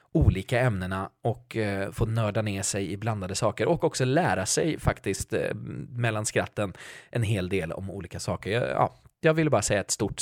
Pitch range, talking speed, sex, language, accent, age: 100-135 Hz, 195 wpm, male, Swedish, native, 20-39